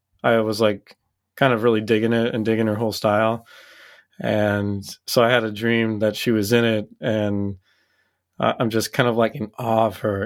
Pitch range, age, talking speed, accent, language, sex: 105-115 Hz, 30-49, 200 wpm, American, English, male